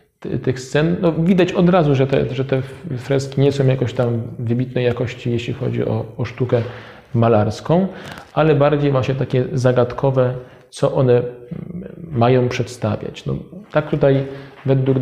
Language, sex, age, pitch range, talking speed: Polish, male, 40-59, 115-135 Hz, 145 wpm